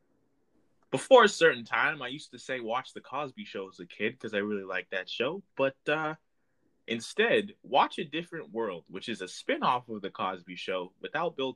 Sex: male